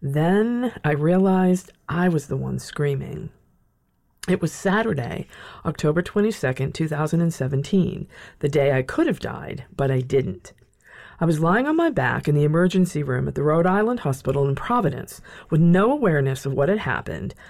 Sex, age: female, 50-69